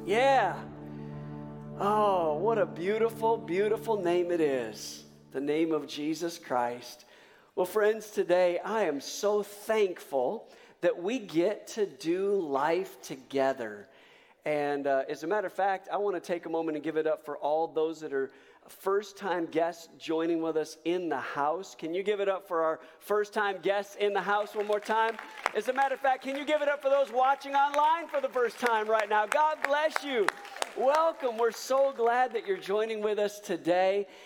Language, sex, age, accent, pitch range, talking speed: English, male, 50-69, American, 155-215 Hz, 185 wpm